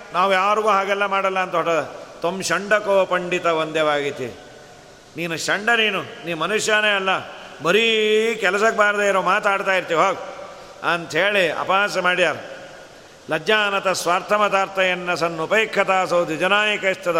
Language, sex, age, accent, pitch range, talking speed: Kannada, male, 50-69, native, 180-215 Hz, 105 wpm